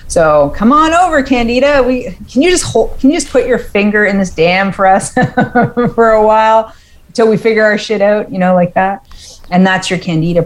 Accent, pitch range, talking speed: American, 155-185 Hz, 220 wpm